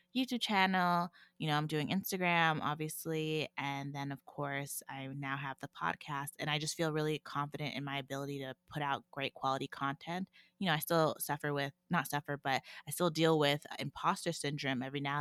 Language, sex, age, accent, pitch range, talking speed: English, female, 20-39, American, 140-165 Hz, 195 wpm